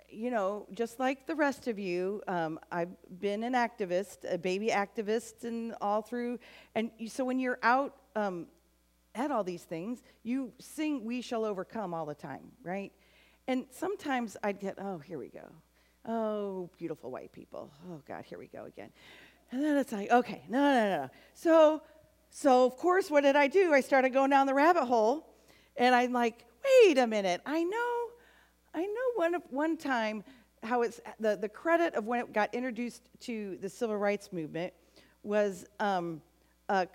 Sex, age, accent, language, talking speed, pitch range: female, 40-59, American, English, 180 wpm, 185-260 Hz